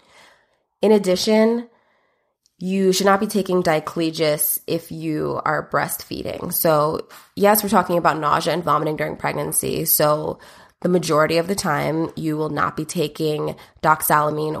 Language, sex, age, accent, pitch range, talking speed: English, female, 20-39, American, 150-185 Hz, 140 wpm